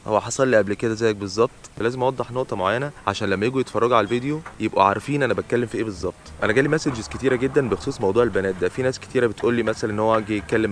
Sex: male